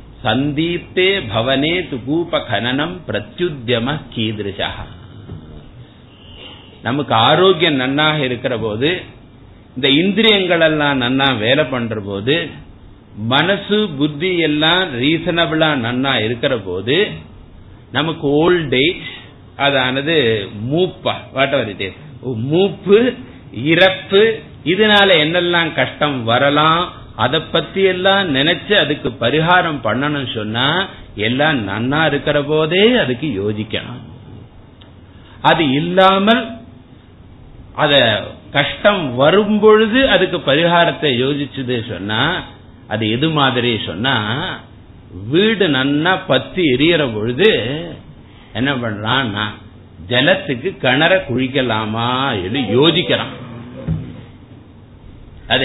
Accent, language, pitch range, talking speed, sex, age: native, Tamil, 110-165 Hz, 75 wpm, male, 50-69